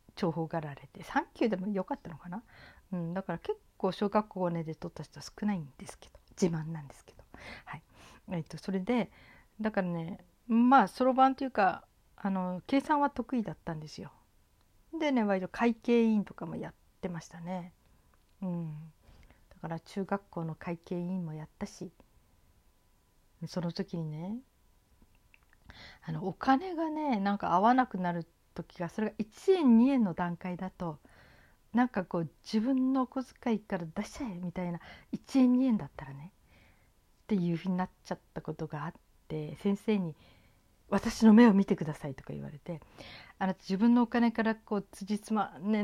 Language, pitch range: Japanese, 165-220 Hz